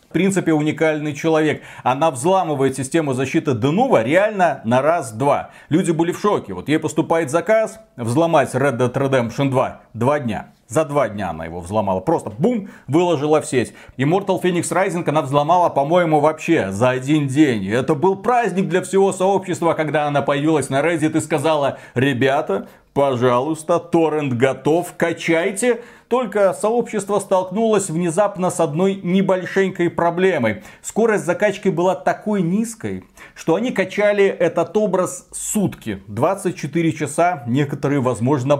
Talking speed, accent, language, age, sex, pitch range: 140 wpm, native, Russian, 30-49, male, 135-180 Hz